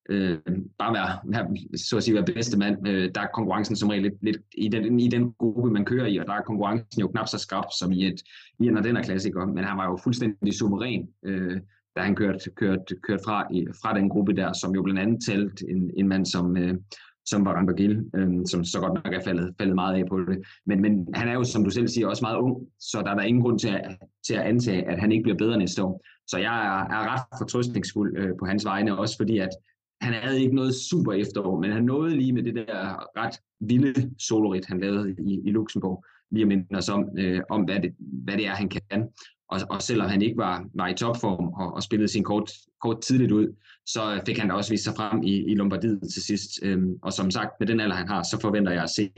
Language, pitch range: Danish, 95-110 Hz